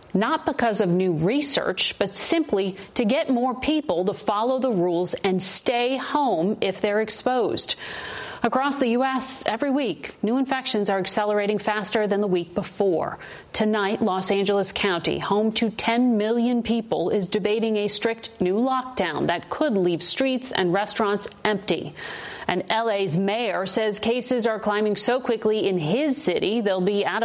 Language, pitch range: English, 195-235 Hz